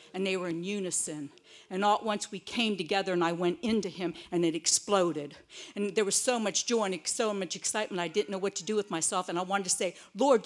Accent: American